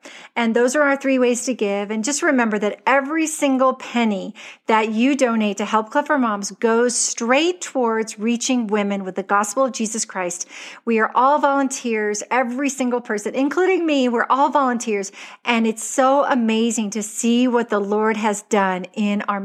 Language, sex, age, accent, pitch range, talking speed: English, female, 40-59, American, 205-260 Hz, 180 wpm